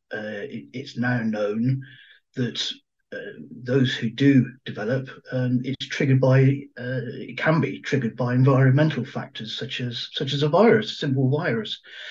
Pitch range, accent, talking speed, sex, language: 115-140 Hz, British, 160 wpm, male, English